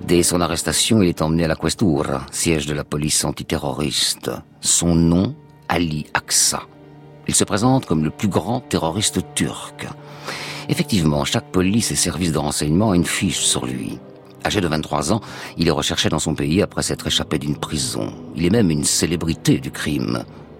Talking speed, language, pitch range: 180 wpm, French, 75-90 Hz